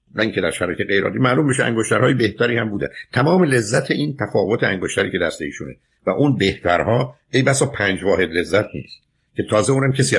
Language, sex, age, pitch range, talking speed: Persian, male, 50-69, 100-135 Hz, 190 wpm